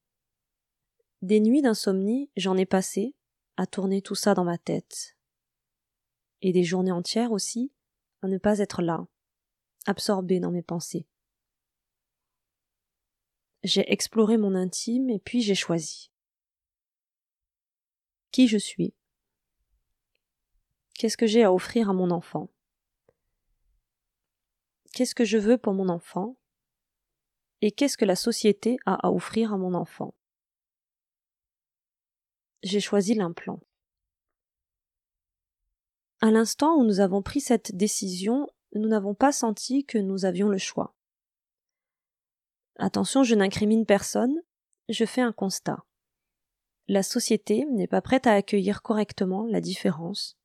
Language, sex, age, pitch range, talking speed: French, female, 20-39, 185-230 Hz, 120 wpm